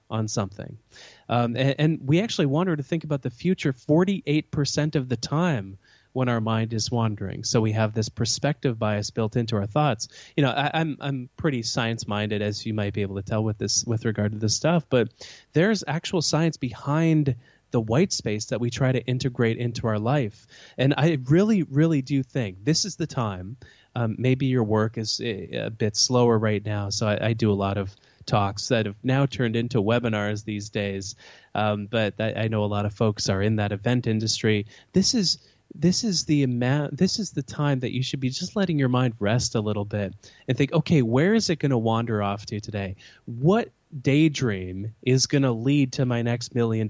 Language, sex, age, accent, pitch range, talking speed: English, male, 20-39, American, 110-145 Hz, 210 wpm